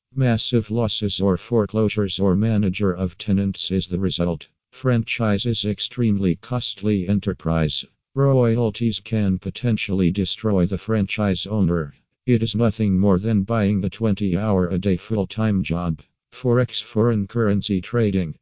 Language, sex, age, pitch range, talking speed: English, male, 50-69, 95-110 Hz, 125 wpm